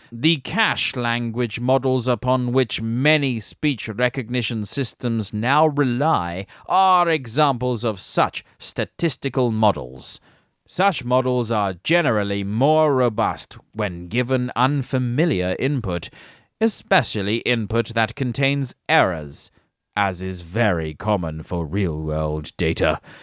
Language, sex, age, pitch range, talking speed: English, male, 30-49, 110-145 Hz, 105 wpm